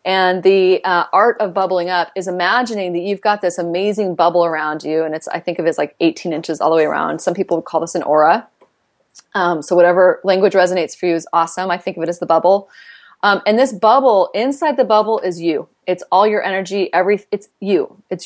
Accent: American